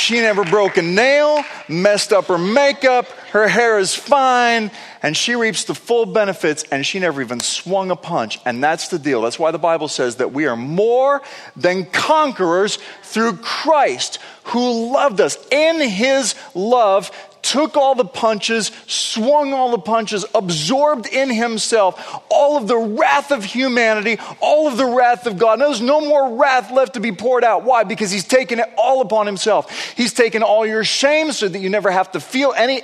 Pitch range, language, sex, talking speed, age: 200-255 Hz, English, male, 190 wpm, 30-49